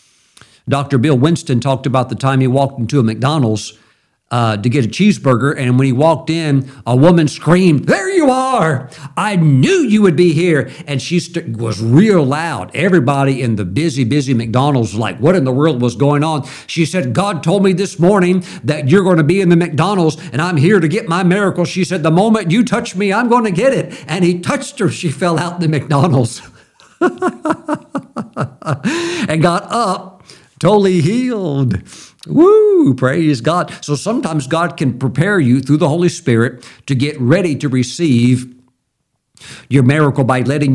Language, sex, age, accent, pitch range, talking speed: English, male, 50-69, American, 125-175 Hz, 180 wpm